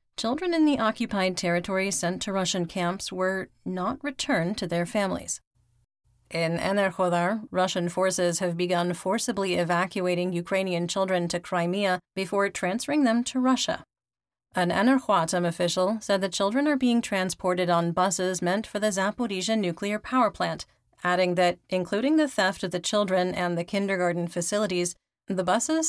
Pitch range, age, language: 180-205 Hz, 30-49, English